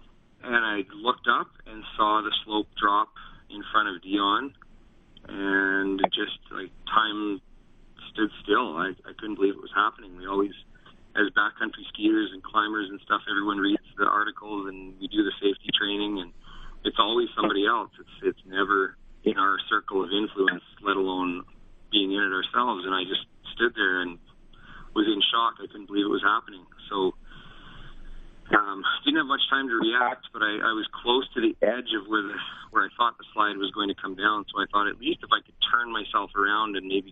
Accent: American